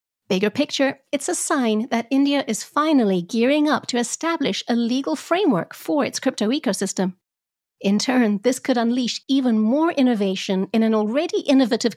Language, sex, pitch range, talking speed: English, female, 195-275 Hz, 160 wpm